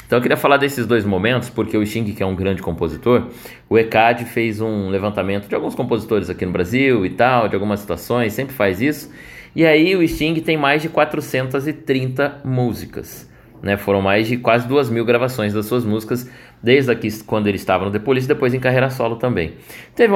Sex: male